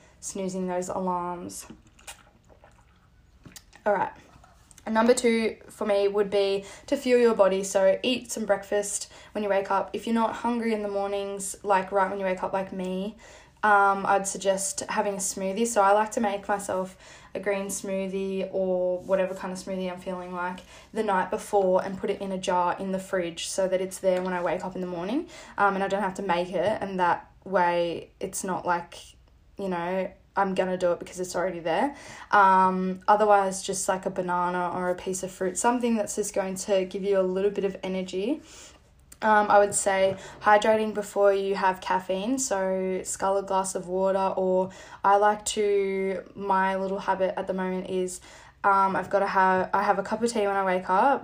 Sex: female